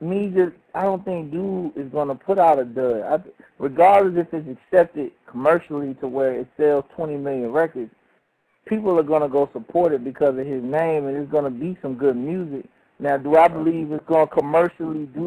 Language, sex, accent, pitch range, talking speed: English, male, American, 145-185 Hz, 210 wpm